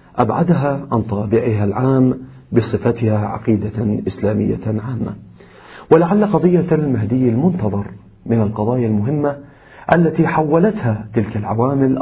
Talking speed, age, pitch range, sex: 95 wpm, 40-59, 110-135 Hz, male